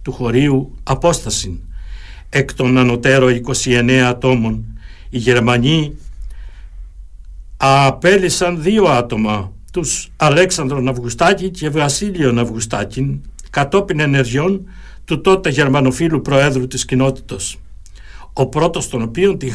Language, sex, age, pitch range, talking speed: Greek, male, 60-79, 110-145 Hz, 100 wpm